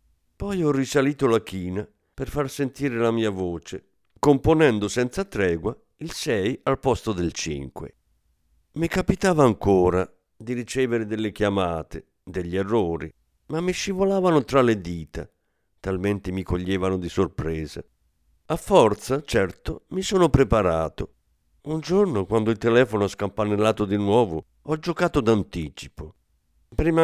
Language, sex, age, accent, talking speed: Italian, male, 50-69, native, 130 wpm